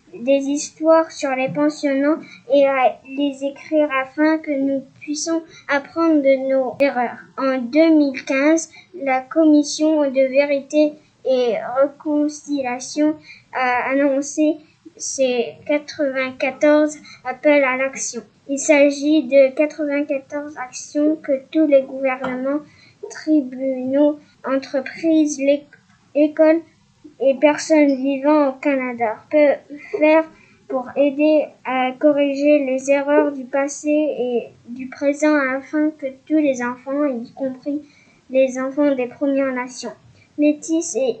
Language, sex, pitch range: French, female, 265-305 Hz